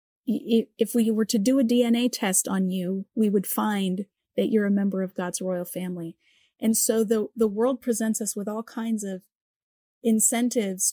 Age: 30-49